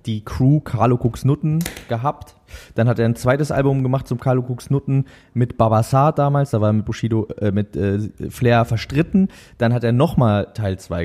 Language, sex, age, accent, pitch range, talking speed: German, male, 20-39, German, 105-130 Hz, 185 wpm